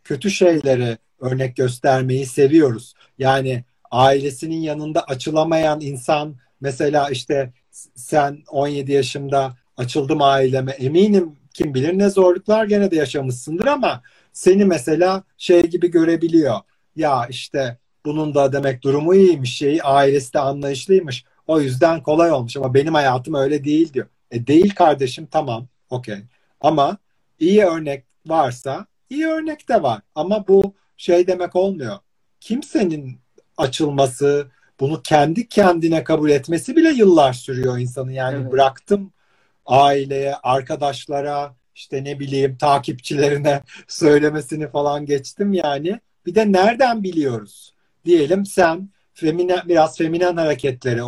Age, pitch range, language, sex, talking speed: 50-69, 135-180 Hz, Turkish, male, 120 wpm